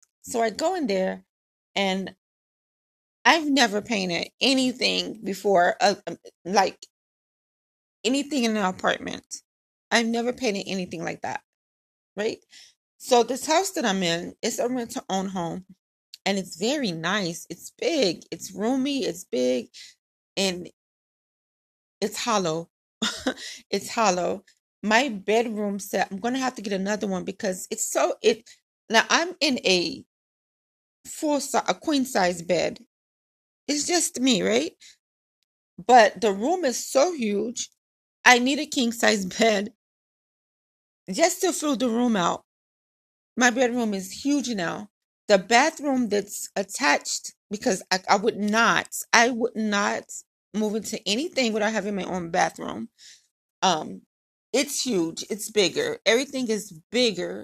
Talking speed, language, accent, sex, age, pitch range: 135 wpm, English, American, female, 30-49, 195-255 Hz